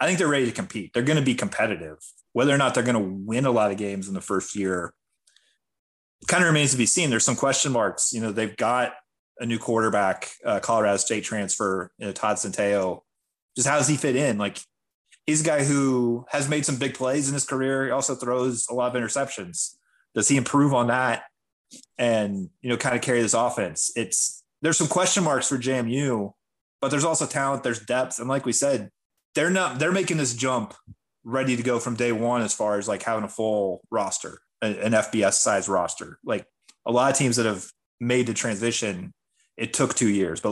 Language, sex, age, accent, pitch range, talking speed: English, male, 30-49, American, 105-135 Hz, 215 wpm